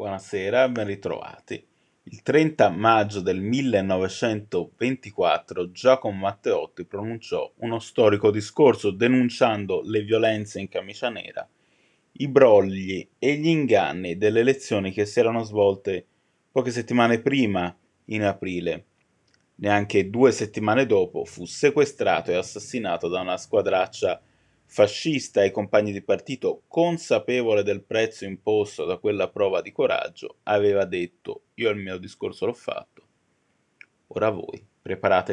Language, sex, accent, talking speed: Italian, male, native, 120 wpm